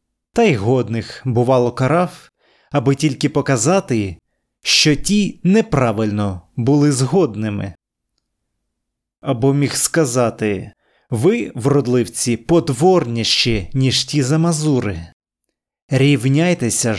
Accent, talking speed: native, 80 wpm